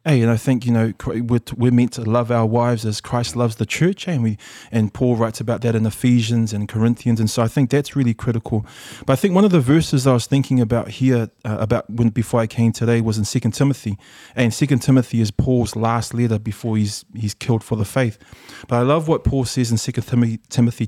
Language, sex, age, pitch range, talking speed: English, male, 20-39, 110-130 Hz, 240 wpm